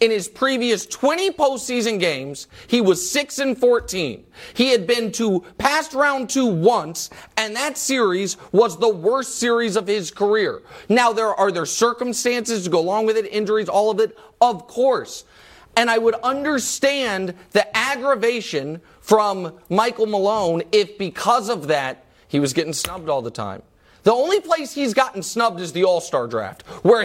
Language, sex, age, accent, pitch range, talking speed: English, male, 30-49, American, 180-240 Hz, 170 wpm